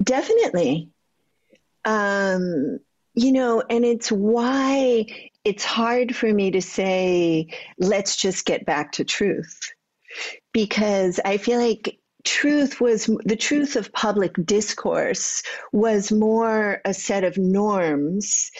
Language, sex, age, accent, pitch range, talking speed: English, female, 50-69, American, 185-235 Hz, 115 wpm